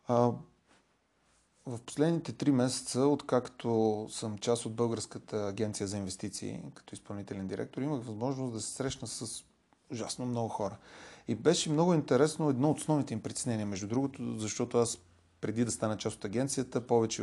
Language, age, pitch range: Bulgarian, 30-49, 110-130 Hz